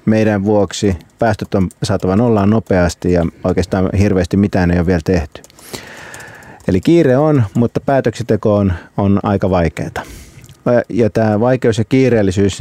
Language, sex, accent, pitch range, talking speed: Finnish, male, native, 95-115 Hz, 135 wpm